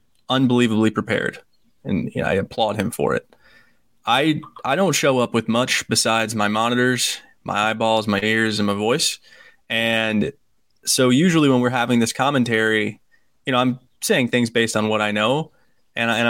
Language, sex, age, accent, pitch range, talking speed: English, male, 20-39, American, 105-125 Hz, 165 wpm